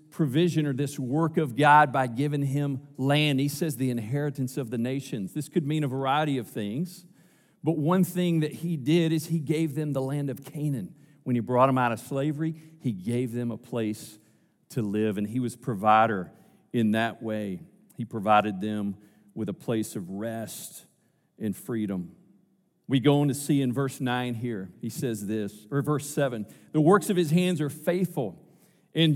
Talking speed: 190 wpm